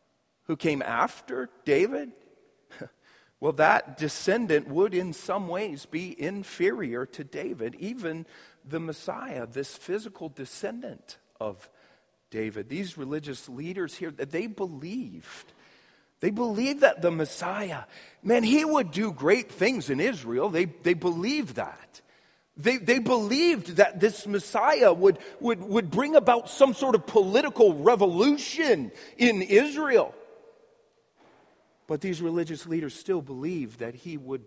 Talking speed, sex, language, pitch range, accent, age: 130 wpm, male, English, 130-205 Hz, American, 40-59